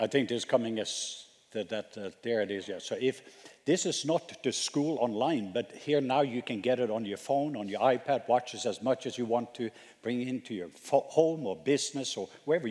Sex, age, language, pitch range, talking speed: male, 60-79, English, 115-140 Hz, 235 wpm